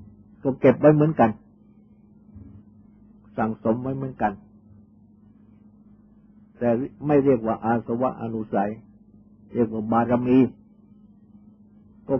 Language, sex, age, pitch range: Thai, male, 60-79, 105-140 Hz